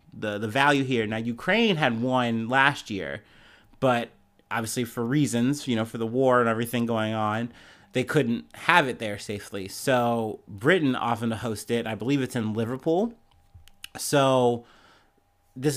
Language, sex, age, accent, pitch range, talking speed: English, male, 30-49, American, 120-145 Hz, 160 wpm